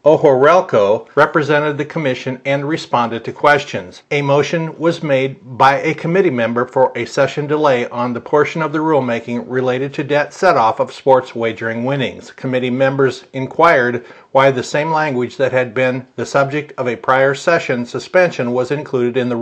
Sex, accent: male, American